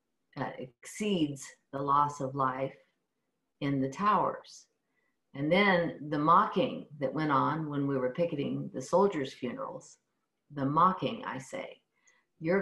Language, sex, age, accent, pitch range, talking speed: English, female, 50-69, American, 140-175 Hz, 135 wpm